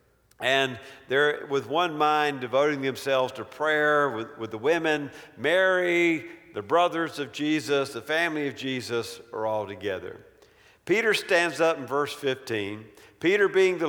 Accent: American